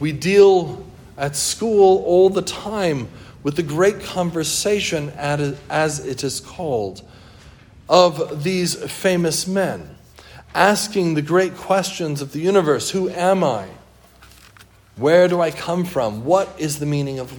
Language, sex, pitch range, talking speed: English, male, 135-175 Hz, 135 wpm